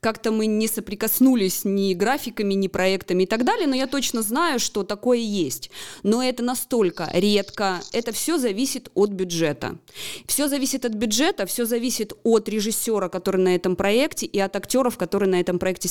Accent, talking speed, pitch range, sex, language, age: native, 175 wpm, 180-230 Hz, female, Russian, 20-39